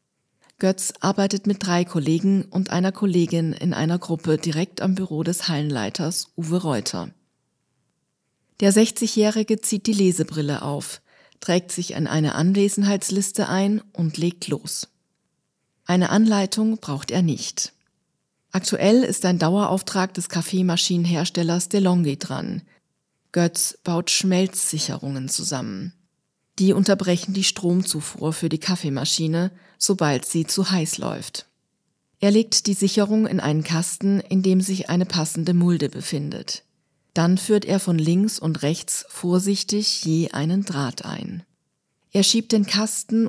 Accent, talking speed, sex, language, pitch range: German, 130 wpm, female, German, 160-195 Hz